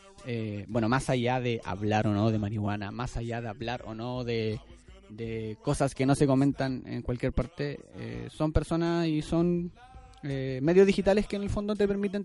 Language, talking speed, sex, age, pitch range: Spanish, 195 wpm, male, 20-39, 125-165 Hz